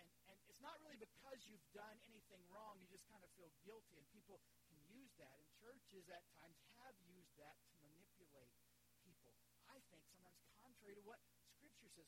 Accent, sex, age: American, male, 50-69